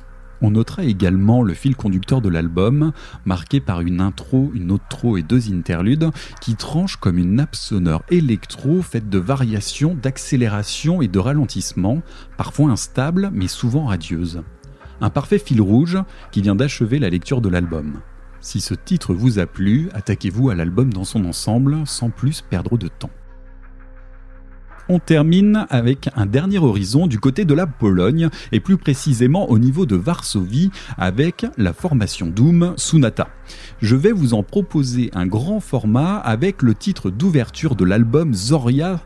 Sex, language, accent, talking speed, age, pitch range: male, French, French, 160 wpm, 40-59, 100-155 Hz